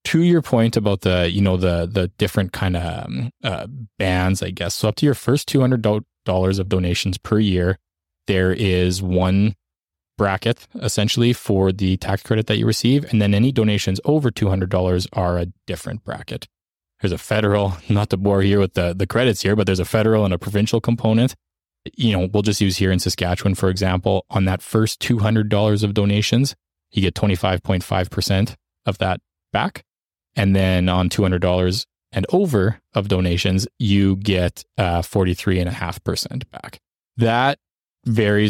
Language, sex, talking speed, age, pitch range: English, male, 180 wpm, 20-39, 90-110 Hz